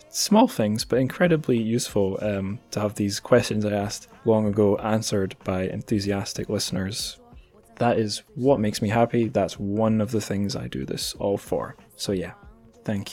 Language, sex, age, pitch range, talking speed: English, male, 10-29, 100-120 Hz, 170 wpm